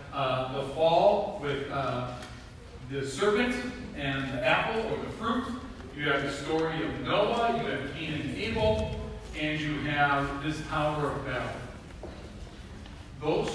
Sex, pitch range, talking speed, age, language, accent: male, 120-150 Hz, 140 wpm, 40-59, English, American